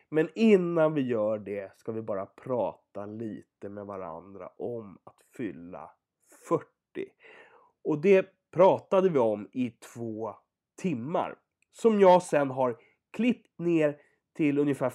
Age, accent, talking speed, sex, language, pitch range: 30-49, Swedish, 130 wpm, male, English, 125-195 Hz